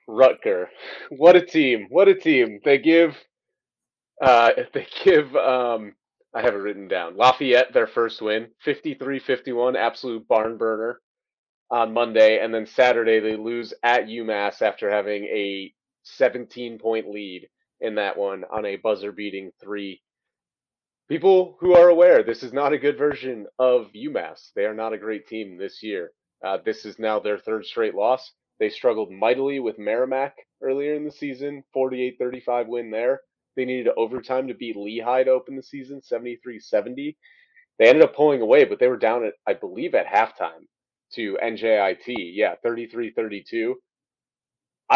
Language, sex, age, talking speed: English, male, 30-49, 160 wpm